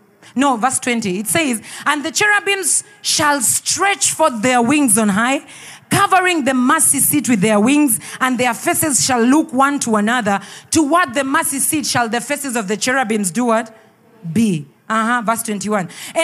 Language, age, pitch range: English, 40-59, 230-345 Hz